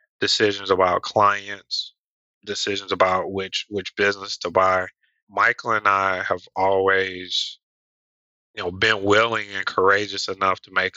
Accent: American